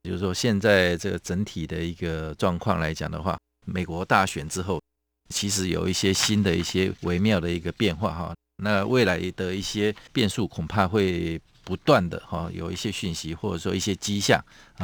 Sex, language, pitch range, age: male, Chinese, 85-105 Hz, 50-69